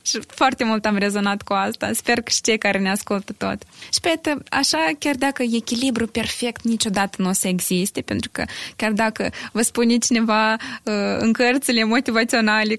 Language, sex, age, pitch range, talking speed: Romanian, female, 20-39, 215-260 Hz, 180 wpm